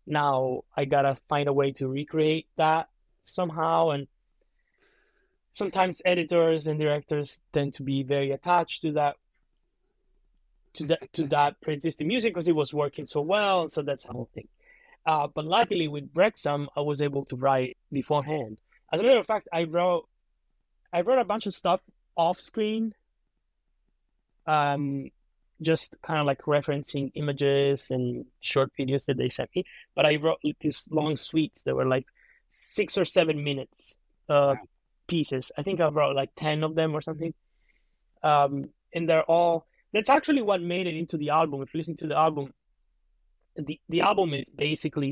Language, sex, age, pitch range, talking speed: English, male, 20-39, 140-170 Hz, 170 wpm